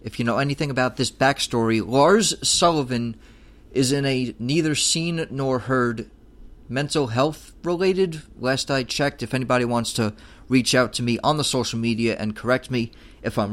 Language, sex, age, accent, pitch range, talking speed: English, male, 30-49, American, 120-155 Hz, 175 wpm